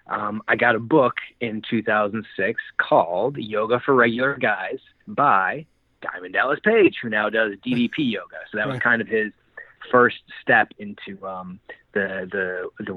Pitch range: 100-130 Hz